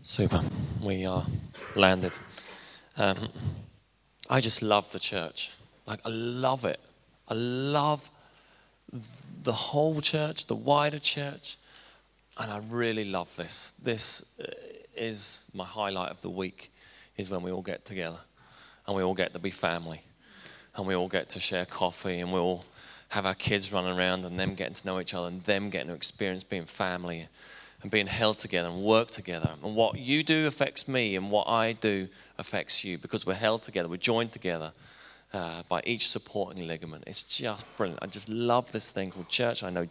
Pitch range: 95-125 Hz